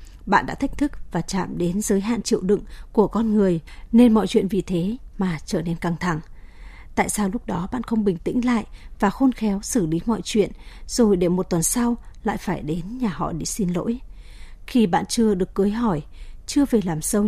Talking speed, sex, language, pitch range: 220 wpm, female, Vietnamese, 185-235 Hz